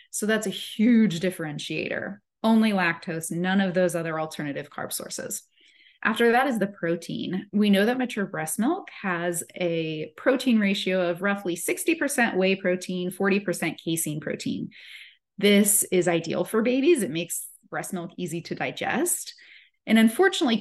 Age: 20-39